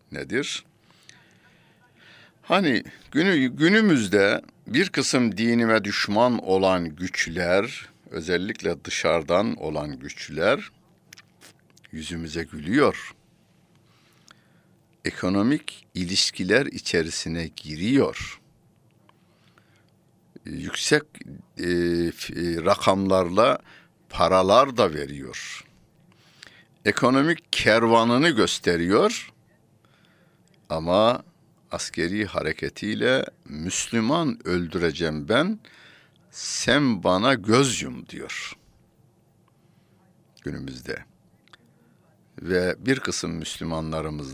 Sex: male